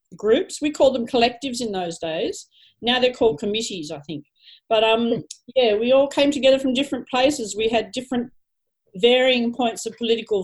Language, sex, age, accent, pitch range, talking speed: English, female, 40-59, Australian, 215-255 Hz, 180 wpm